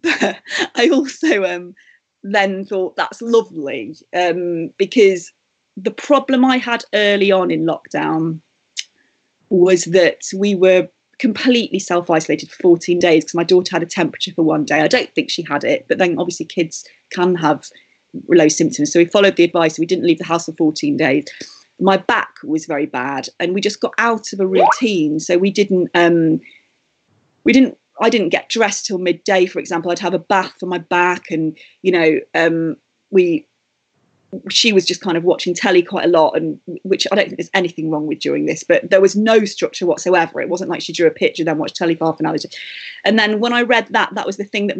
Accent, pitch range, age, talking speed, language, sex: British, 170-205 Hz, 30-49, 205 wpm, English, female